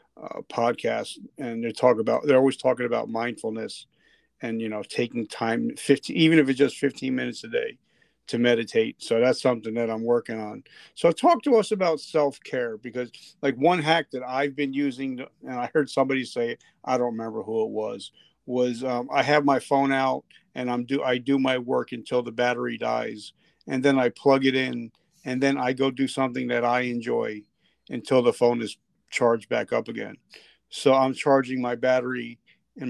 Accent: American